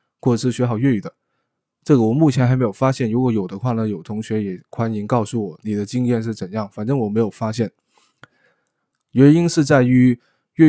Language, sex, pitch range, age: Chinese, male, 110-130 Hz, 20-39